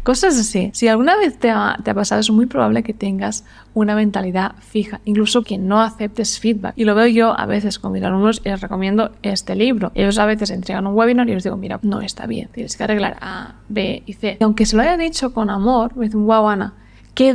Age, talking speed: 20-39, 245 wpm